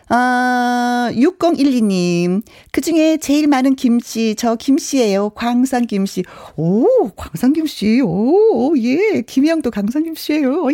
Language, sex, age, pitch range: Korean, female, 40-59, 175-270 Hz